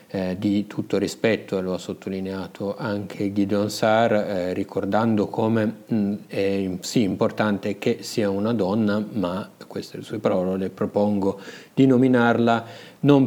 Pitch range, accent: 95-105 Hz, native